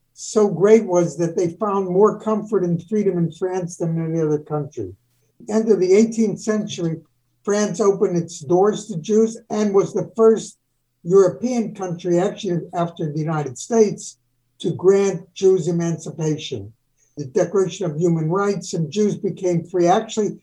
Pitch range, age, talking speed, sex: 150-195 Hz, 60-79, 155 wpm, male